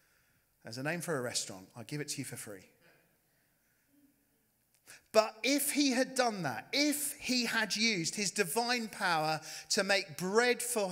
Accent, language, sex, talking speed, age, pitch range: British, English, male, 165 wpm, 40-59, 150-245 Hz